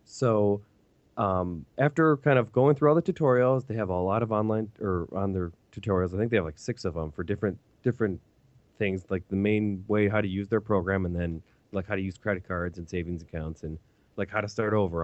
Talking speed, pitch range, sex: 230 wpm, 85-110 Hz, male